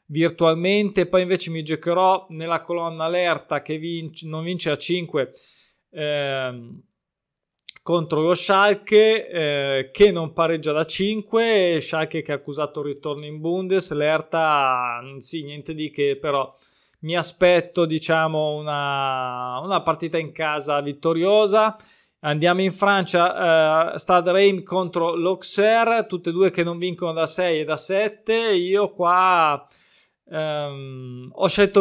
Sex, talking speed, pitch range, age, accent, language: male, 135 wpm, 155-190 Hz, 20-39, native, Italian